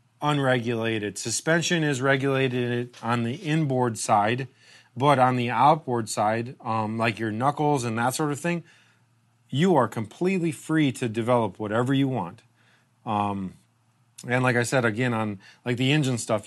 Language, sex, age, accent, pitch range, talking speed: English, male, 30-49, American, 115-145 Hz, 155 wpm